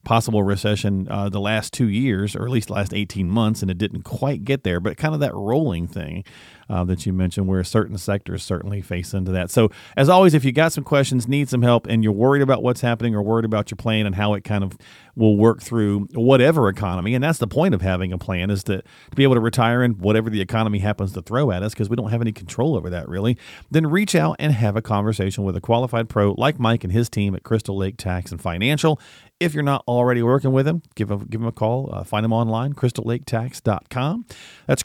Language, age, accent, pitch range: English, 40-59, American, 100-135 Hz